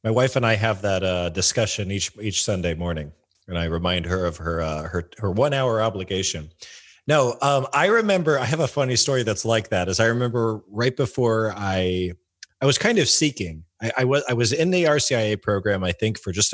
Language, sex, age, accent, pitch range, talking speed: English, male, 30-49, American, 90-115 Hz, 220 wpm